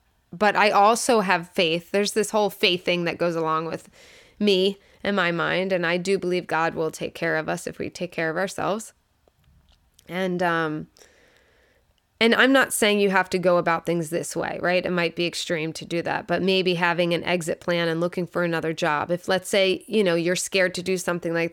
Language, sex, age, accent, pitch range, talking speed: English, female, 20-39, American, 170-215 Hz, 215 wpm